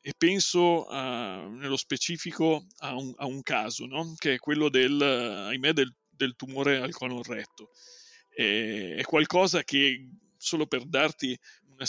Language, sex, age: Italian, male, 40-59